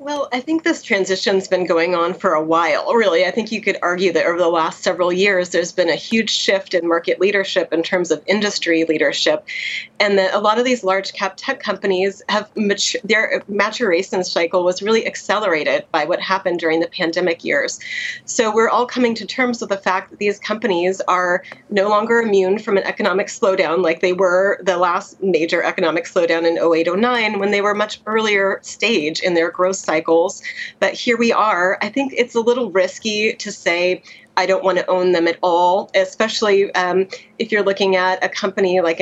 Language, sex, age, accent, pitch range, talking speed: English, female, 30-49, American, 180-210 Hz, 200 wpm